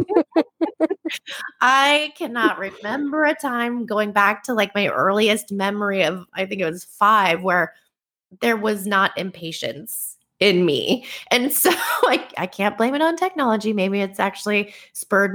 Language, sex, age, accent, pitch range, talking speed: English, female, 20-39, American, 175-225 Hz, 150 wpm